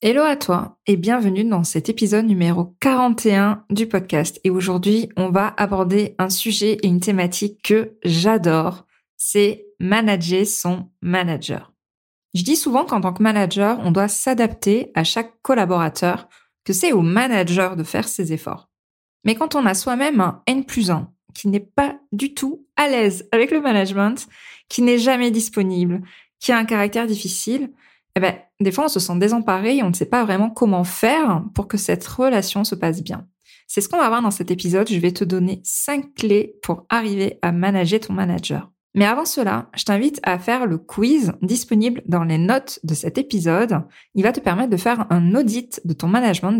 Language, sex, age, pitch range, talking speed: French, female, 20-39, 180-230 Hz, 190 wpm